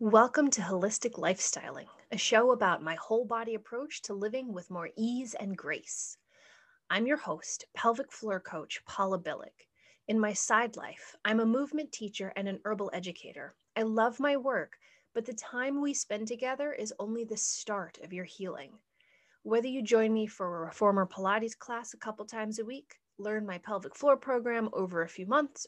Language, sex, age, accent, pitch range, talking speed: English, female, 30-49, American, 195-250 Hz, 180 wpm